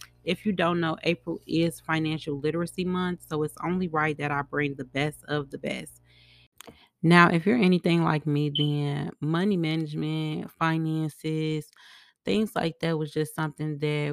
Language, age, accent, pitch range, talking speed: English, 20-39, American, 140-155 Hz, 160 wpm